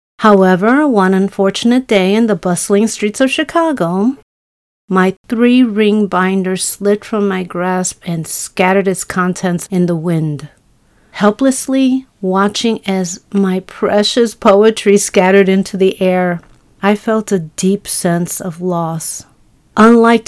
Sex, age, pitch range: female, 50-69, 175-210 Hz